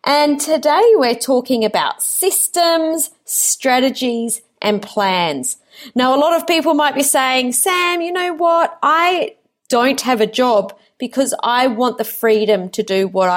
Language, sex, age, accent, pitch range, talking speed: English, female, 30-49, Australian, 210-270 Hz, 155 wpm